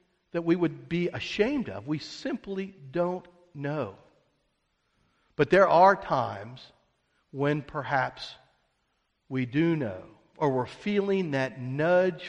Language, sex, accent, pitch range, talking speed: English, male, American, 130-180 Hz, 115 wpm